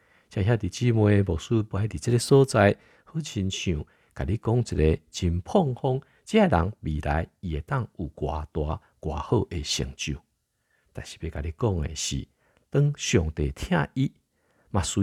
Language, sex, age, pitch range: Chinese, male, 50-69, 80-115 Hz